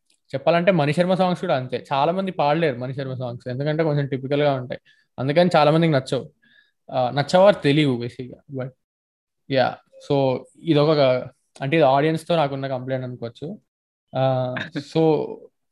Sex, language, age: male, Telugu, 20-39